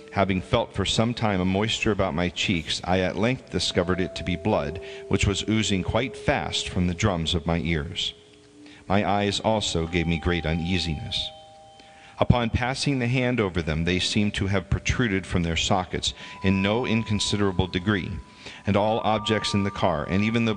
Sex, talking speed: male, 185 wpm